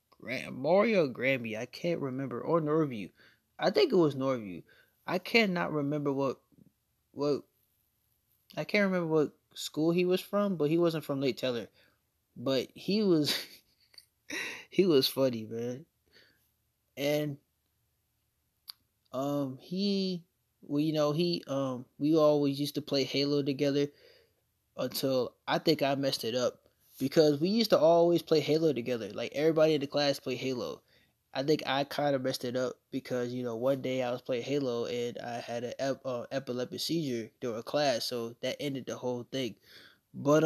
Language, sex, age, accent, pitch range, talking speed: English, male, 20-39, American, 125-160 Hz, 160 wpm